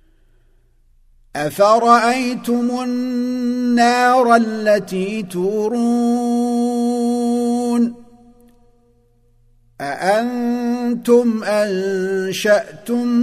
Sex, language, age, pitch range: male, Arabic, 50-69, 165-210 Hz